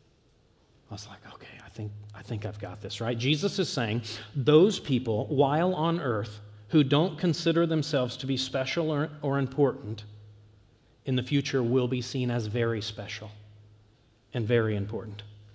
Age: 40-59